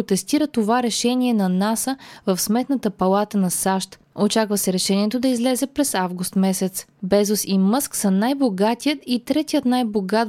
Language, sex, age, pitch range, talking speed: Bulgarian, female, 20-39, 195-245 Hz, 150 wpm